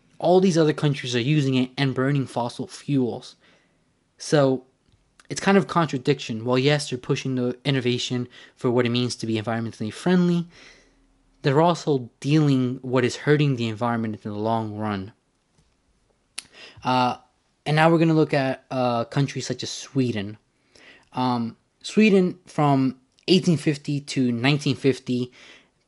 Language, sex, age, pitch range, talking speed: English, male, 20-39, 120-145 Hz, 145 wpm